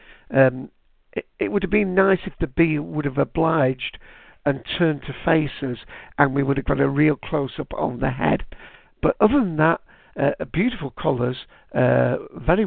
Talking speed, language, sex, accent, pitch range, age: 175 wpm, English, male, British, 125-150 Hz, 60-79